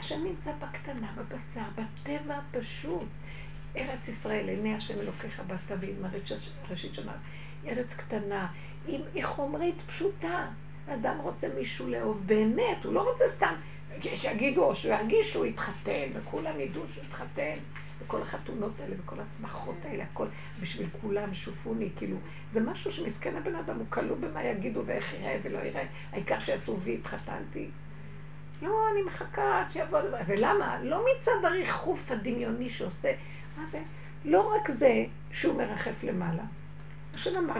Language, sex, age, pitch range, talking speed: Hebrew, female, 60-79, 150-225 Hz, 130 wpm